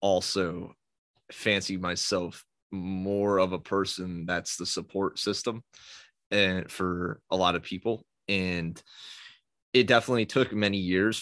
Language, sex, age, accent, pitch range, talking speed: English, male, 30-49, American, 90-105 Hz, 125 wpm